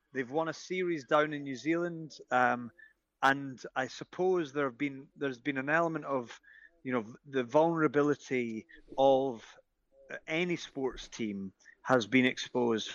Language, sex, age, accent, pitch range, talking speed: English, male, 30-49, British, 120-150 Hz, 145 wpm